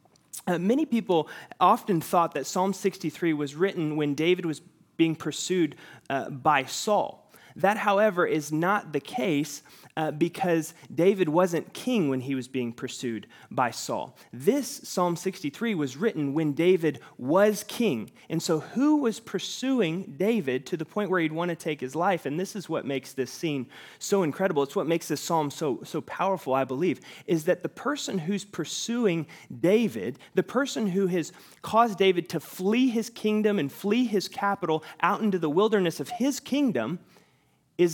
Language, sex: English, male